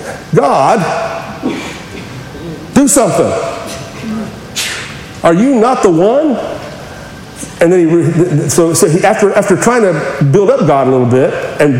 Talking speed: 115 wpm